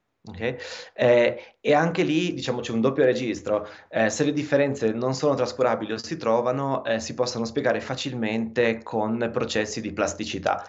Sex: male